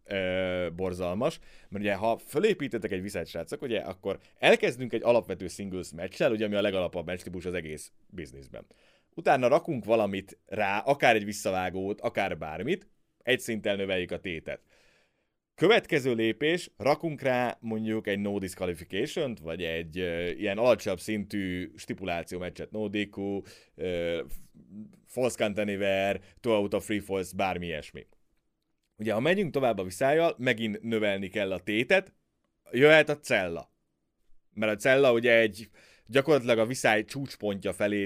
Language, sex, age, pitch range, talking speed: Hungarian, male, 30-49, 95-115 Hz, 130 wpm